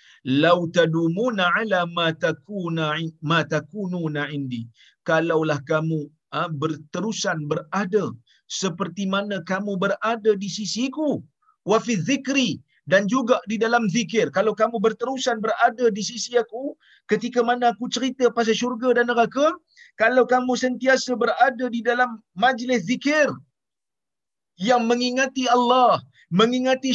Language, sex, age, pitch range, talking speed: Malayalam, male, 50-69, 150-235 Hz, 115 wpm